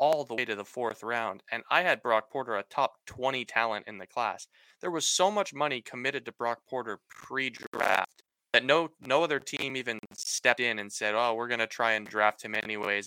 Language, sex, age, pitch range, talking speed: English, male, 20-39, 110-140 Hz, 220 wpm